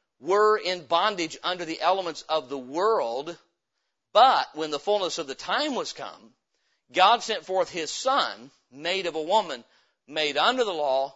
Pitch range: 165-215 Hz